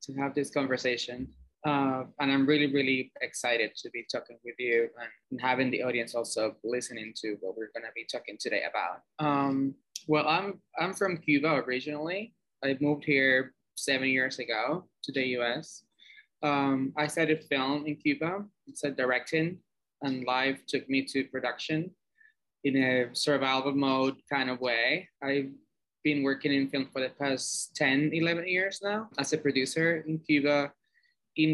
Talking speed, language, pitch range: 165 wpm, English, 130-150 Hz